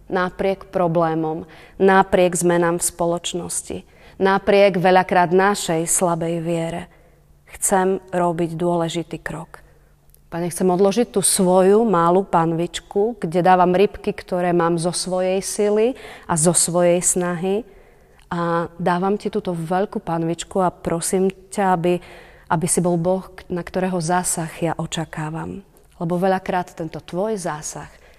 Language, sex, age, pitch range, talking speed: Slovak, female, 30-49, 170-190 Hz, 125 wpm